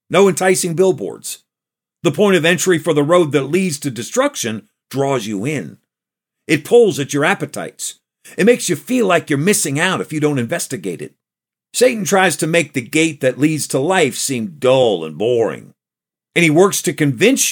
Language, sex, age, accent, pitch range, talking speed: English, male, 50-69, American, 150-200 Hz, 185 wpm